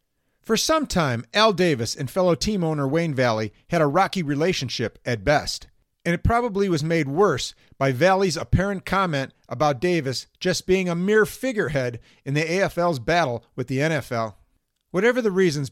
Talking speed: 170 wpm